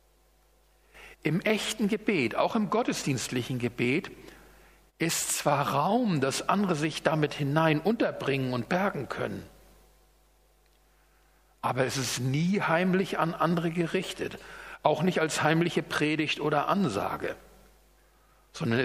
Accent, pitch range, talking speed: German, 135-180 Hz, 110 wpm